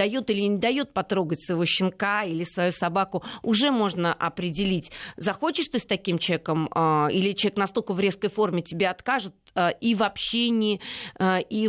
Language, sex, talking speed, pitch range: Russian, female, 155 wpm, 170-220 Hz